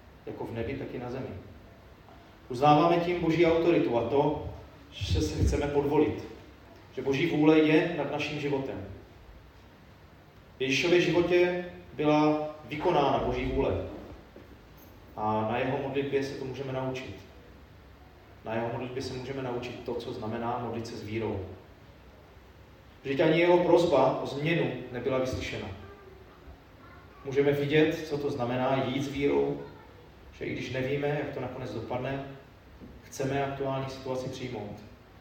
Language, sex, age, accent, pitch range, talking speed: Czech, male, 30-49, native, 105-135 Hz, 135 wpm